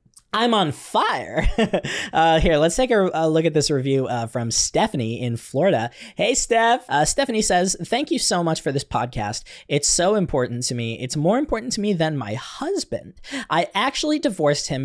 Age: 20-39